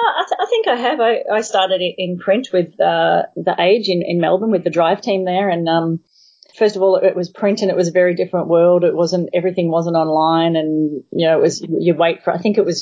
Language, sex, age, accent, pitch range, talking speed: English, female, 30-49, Australian, 165-190 Hz, 260 wpm